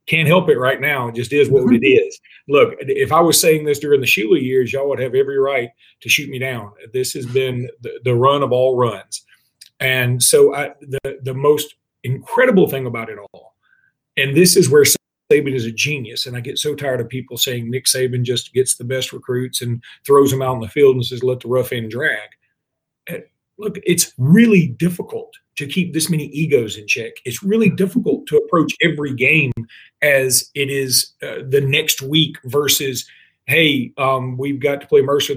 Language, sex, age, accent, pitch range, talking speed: English, male, 40-59, American, 130-160 Hz, 205 wpm